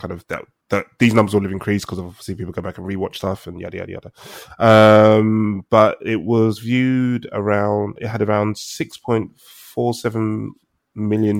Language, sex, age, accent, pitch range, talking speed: English, male, 20-39, British, 95-110 Hz, 185 wpm